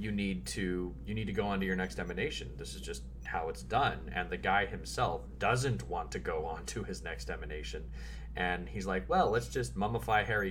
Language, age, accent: English, 30-49, American